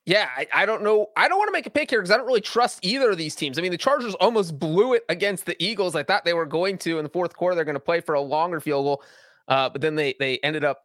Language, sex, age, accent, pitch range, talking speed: English, male, 30-49, American, 150-195 Hz, 320 wpm